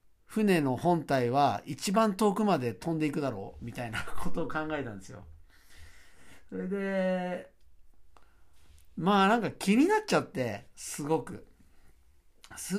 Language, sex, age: Japanese, male, 50-69